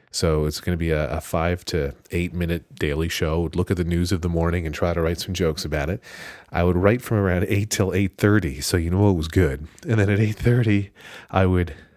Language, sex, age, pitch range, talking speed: English, male, 30-49, 80-95 Hz, 250 wpm